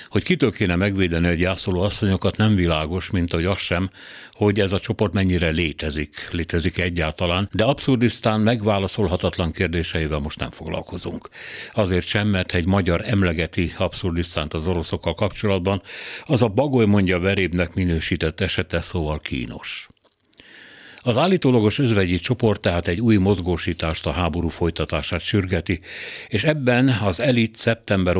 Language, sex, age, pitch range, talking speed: Hungarian, male, 60-79, 85-105 Hz, 130 wpm